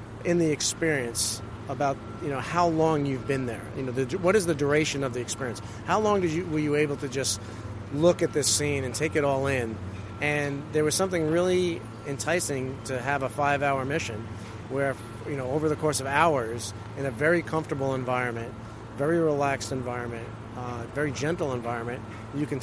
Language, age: English, 30-49